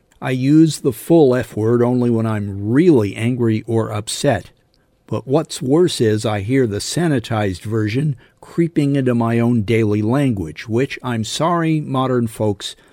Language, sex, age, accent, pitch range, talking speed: English, male, 50-69, American, 105-135 Hz, 150 wpm